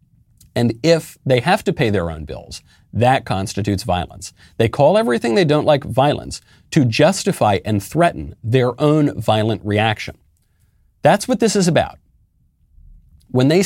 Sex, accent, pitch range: male, American, 95-150 Hz